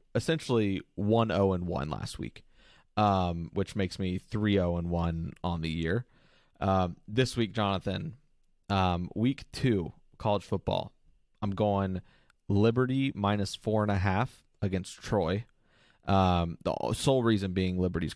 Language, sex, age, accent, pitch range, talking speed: English, male, 30-49, American, 90-105 Hz, 130 wpm